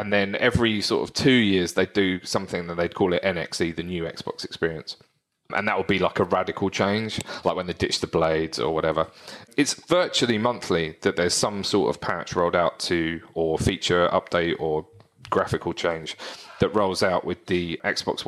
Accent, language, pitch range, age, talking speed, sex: British, English, 90-120 Hz, 30-49, 195 wpm, male